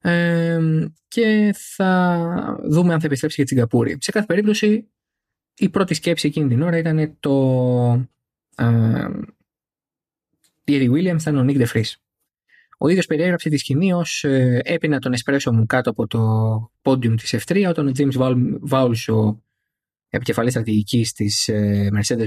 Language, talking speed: Greek, 135 wpm